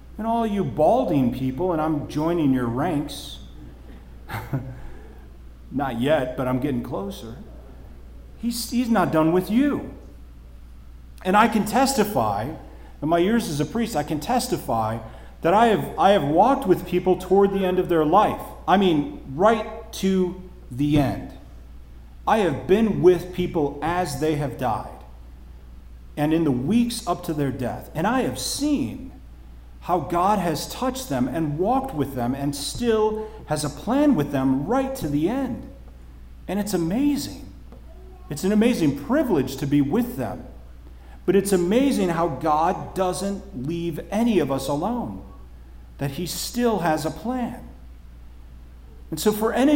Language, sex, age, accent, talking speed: English, male, 40-59, American, 155 wpm